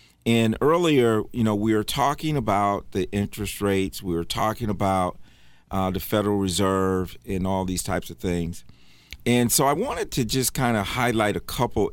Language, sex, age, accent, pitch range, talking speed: English, male, 40-59, American, 95-115 Hz, 180 wpm